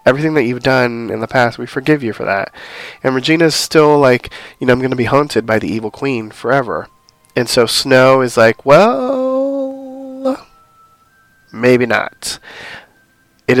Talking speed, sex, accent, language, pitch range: 165 wpm, male, American, English, 115-140 Hz